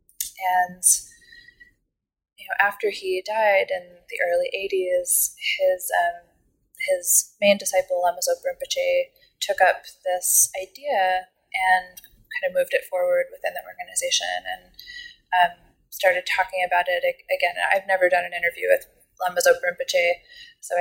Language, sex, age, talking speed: English, female, 20-39, 140 wpm